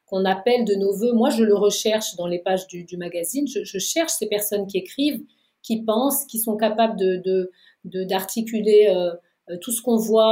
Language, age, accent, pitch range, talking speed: French, 40-59, French, 195-235 Hz, 210 wpm